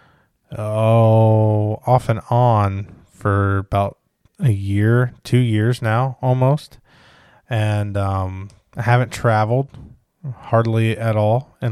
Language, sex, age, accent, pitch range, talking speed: English, male, 20-39, American, 105-125 Hz, 110 wpm